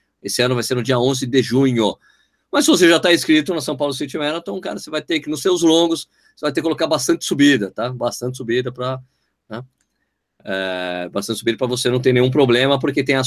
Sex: male